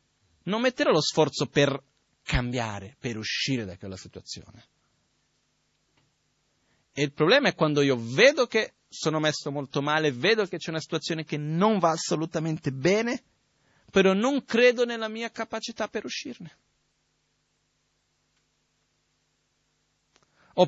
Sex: male